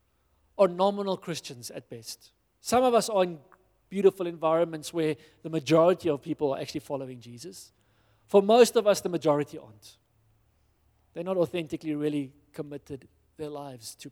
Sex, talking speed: male, 155 wpm